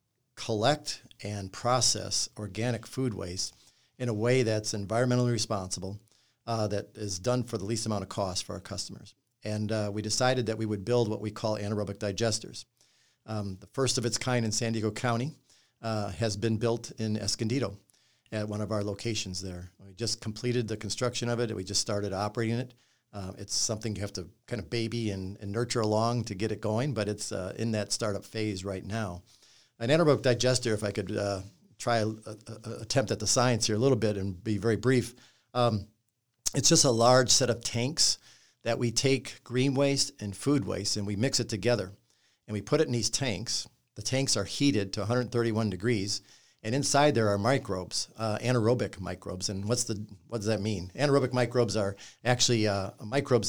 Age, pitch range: 50-69, 105-120 Hz